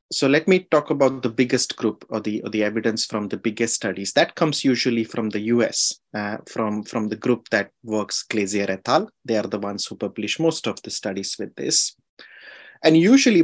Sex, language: male, English